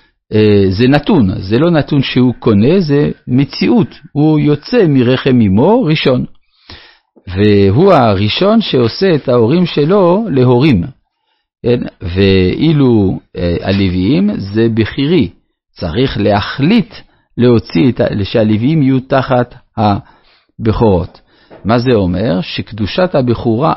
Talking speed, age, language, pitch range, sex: 100 wpm, 50-69, Hebrew, 100-145 Hz, male